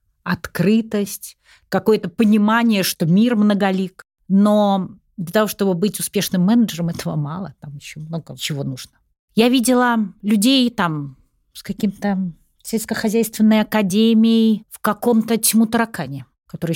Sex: female